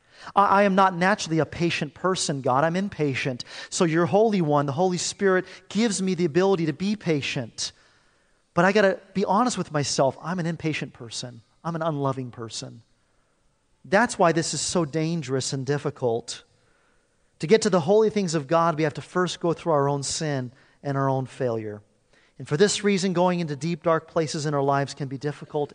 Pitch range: 130-180 Hz